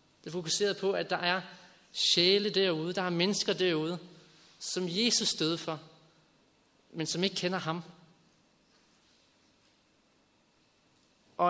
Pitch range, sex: 150-185 Hz, male